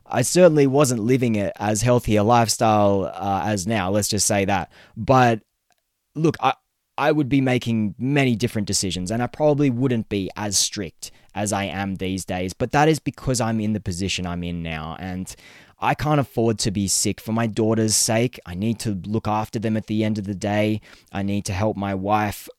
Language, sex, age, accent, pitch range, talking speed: English, male, 20-39, Australian, 105-140 Hz, 205 wpm